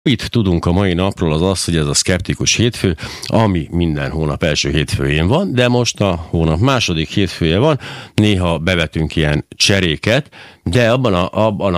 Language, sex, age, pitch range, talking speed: Hungarian, male, 60-79, 80-105 Hz, 170 wpm